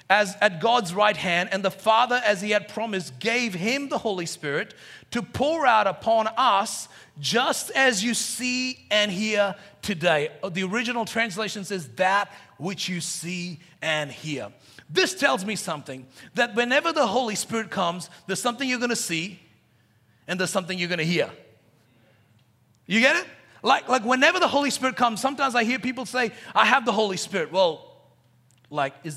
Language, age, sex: English, 40-59, male